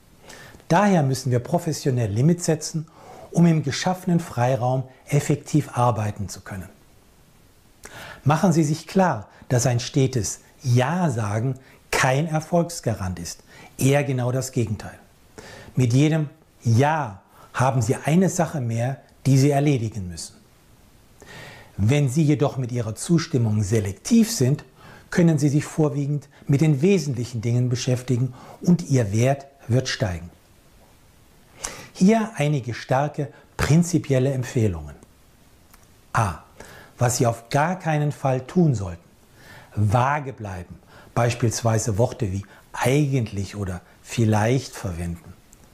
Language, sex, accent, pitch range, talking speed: German, male, German, 115-150 Hz, 115 wpm